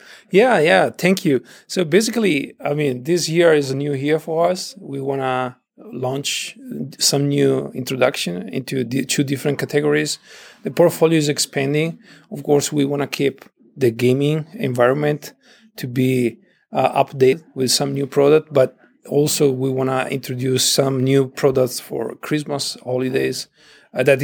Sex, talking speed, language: male, 155 wpm, English